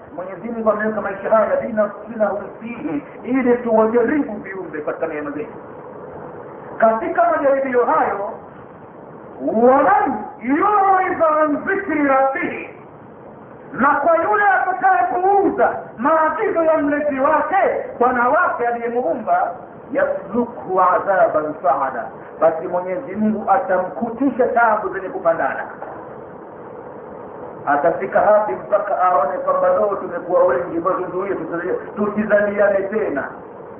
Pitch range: 210-325 Hz